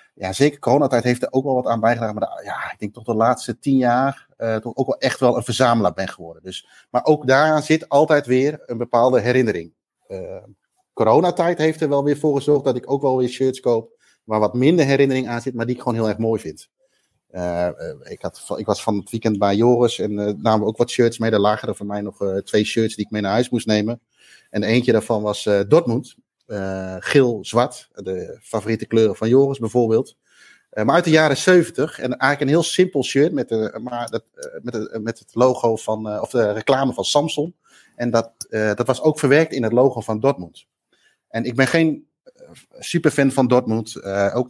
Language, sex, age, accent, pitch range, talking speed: Dutch, male, 30-49, Dutch, 110-140 Hz, 220 wpm